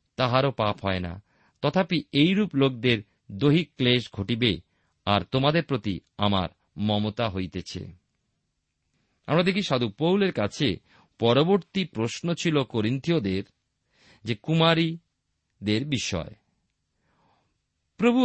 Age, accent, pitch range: 50-69, native, 105-160 Hz